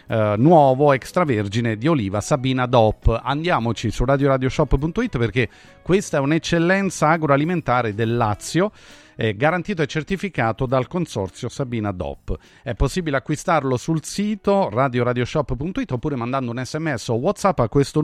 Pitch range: 115-155 Hz